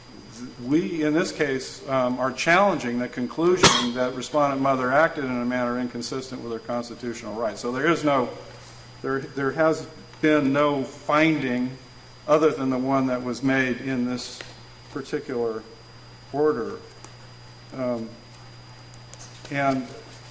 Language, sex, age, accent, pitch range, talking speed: English, male, 50-69, American, 125-140 Hz, 130 wpm